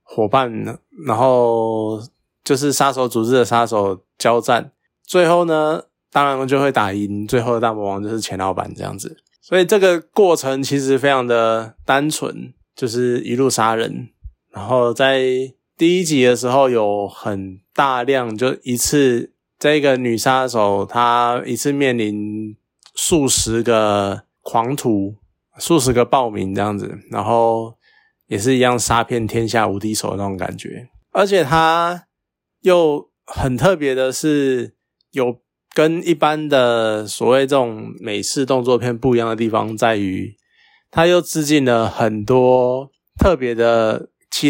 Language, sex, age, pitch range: Chinese, male, 20-39, 110-140 Hz